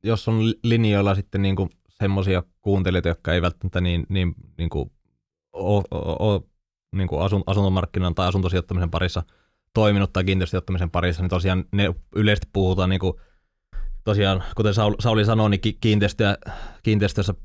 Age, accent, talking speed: 20-39, native, 115 wpm